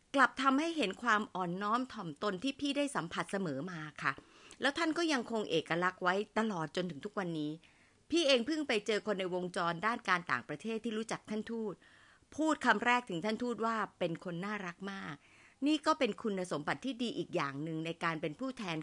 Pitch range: 175-255 Hz